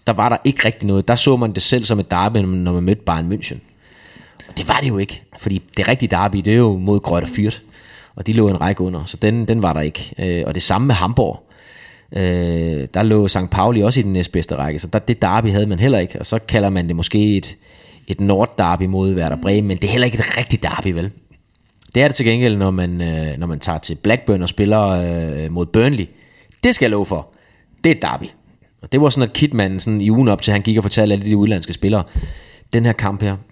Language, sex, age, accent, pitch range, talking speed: Danish, male, 30-49, native, 90-110 Hz, 245 wpm